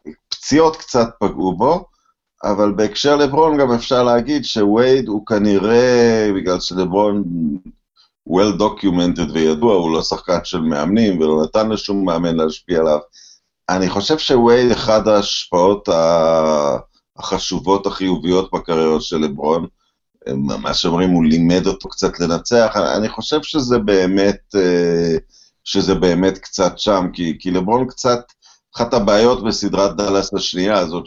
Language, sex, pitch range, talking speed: Hebrew, male, 85-105 Hz, 120 wpm